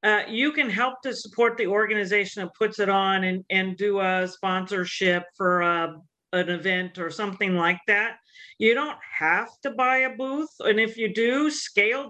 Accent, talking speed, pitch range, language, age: American, 180 wpm, 185-235 Hz, English, 50-69